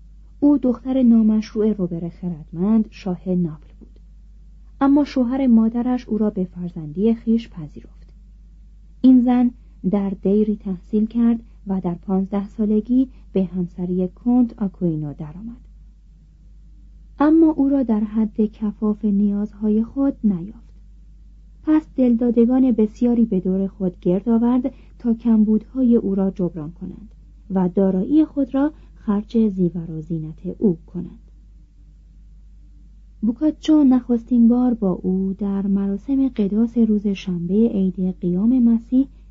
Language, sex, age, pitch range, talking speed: Persian, female, 40-59, 185-235 Hz, 120 wpm